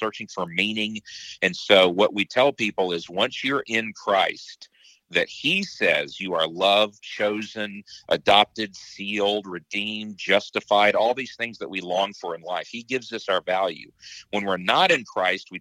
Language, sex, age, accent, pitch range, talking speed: English, male, 50-69, American, 95-115 Hz, 175 wpm